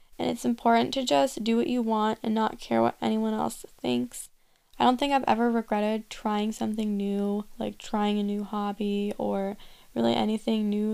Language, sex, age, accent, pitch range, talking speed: English, female, 10-29, American, 210-240 Hz, 185 wpm